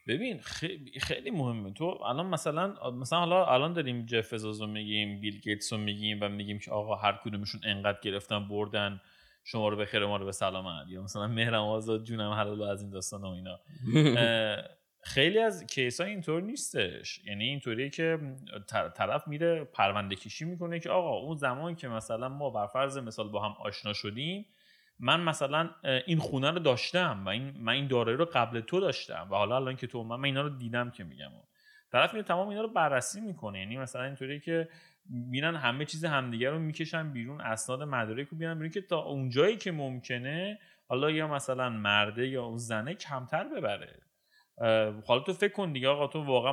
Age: 30-49